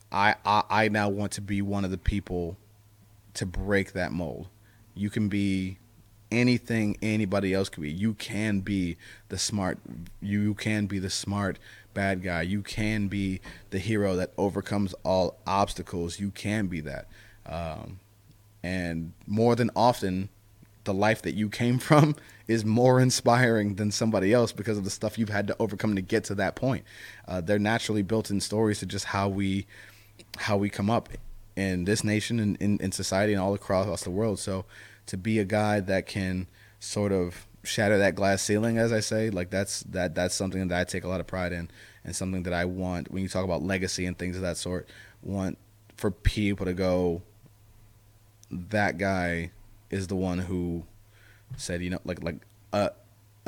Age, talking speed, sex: 30-49, 185 wpm, male